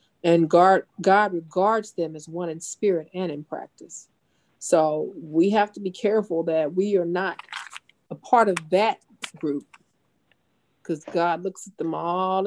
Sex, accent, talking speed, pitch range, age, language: female, American, 155 wpm, 165-190 Hz, 40-59, English